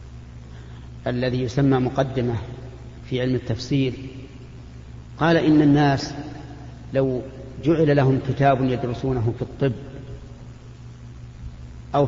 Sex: male